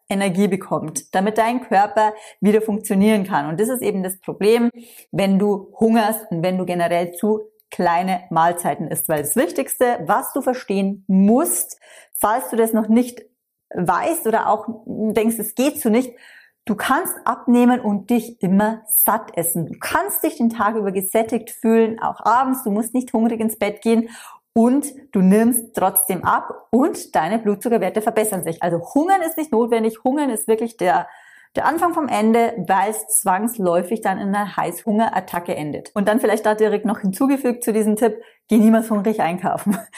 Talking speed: 175 wpm